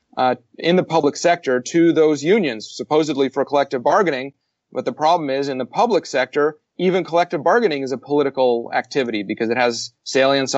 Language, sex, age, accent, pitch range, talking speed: English, male, 30-49, American, 120-140 Hz, 175 wpm